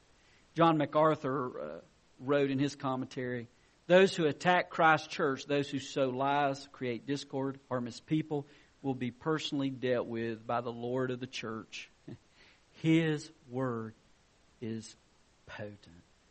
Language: English